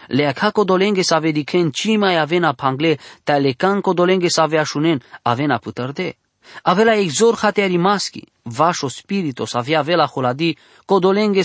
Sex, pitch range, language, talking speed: male, 140-195 Hz, English, 130 wpm